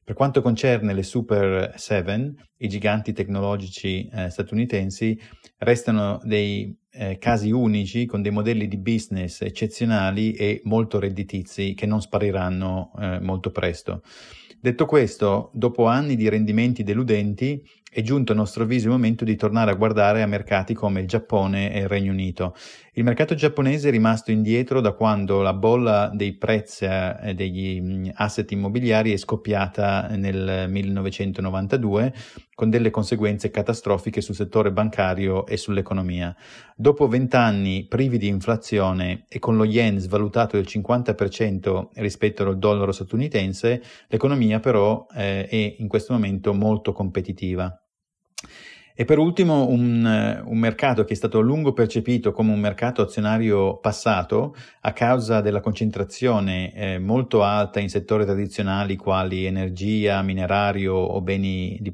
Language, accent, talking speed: Italian, native, 140 wpm